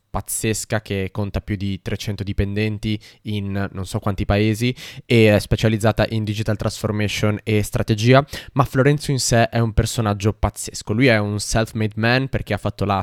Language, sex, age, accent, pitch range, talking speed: Italian, male, 20-39, native, 105-130 Hz, 170 wpm